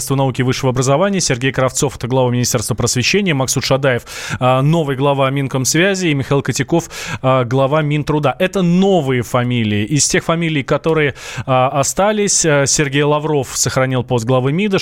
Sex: male